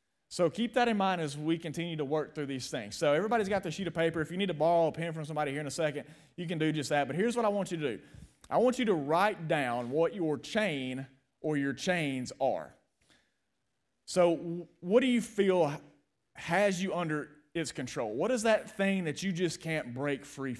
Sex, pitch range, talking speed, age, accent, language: male, 140-175 Hz, 230 wpm, 30-49, American, English